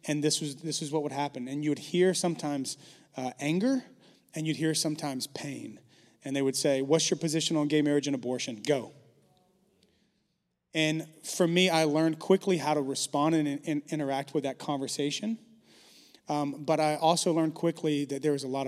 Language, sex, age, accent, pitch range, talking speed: English, male, 30-49, American, 145-170 Hz, 190 wpm